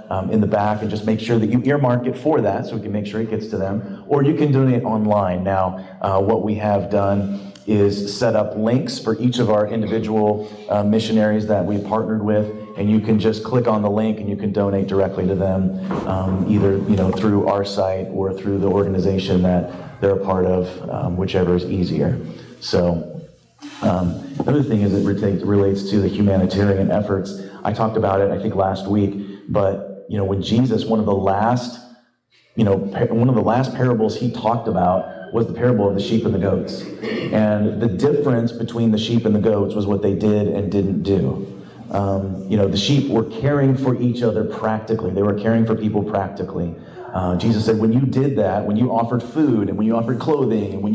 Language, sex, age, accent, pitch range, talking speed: English, male, 30-49, American, 100-115 Hz, 215 wpm